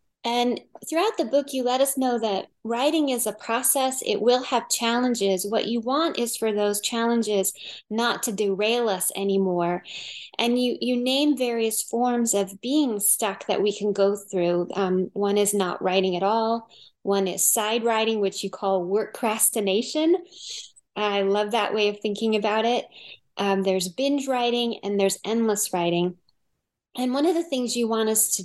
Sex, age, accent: female, 20-39, American